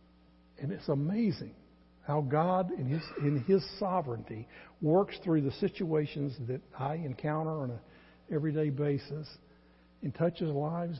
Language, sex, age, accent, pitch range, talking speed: English, male, 60-79, American, 120-170 Hz, 130 wpm